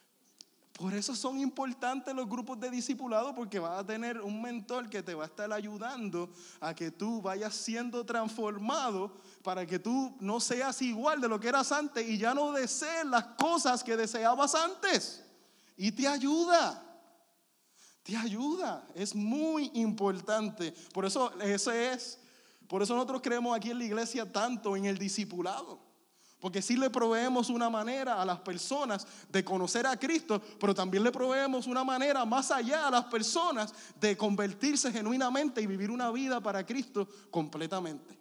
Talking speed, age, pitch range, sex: 160 wpm, 20-39, 200-255 Hz, male